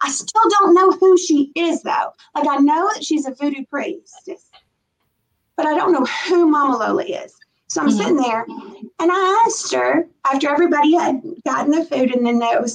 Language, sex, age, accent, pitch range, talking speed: English, female, 40-59, American, 255-345 Hz, 200 wpm